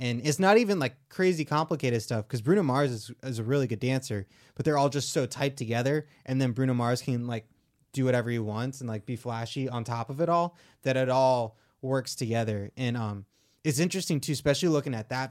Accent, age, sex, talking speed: American, 20-39, male, 225 wpm